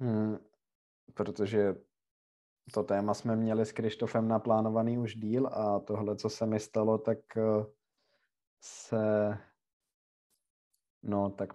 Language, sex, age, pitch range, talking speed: Czech, male, 20-39, 100-120 Hz, 110 wpm